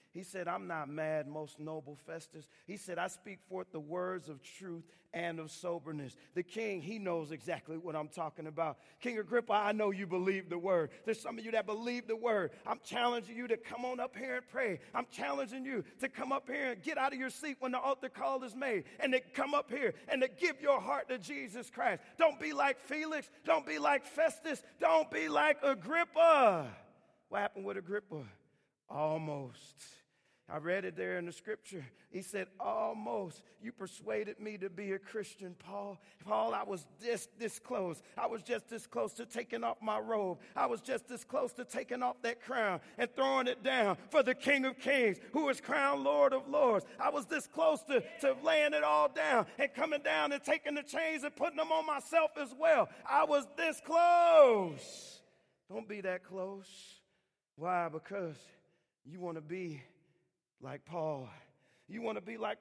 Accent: American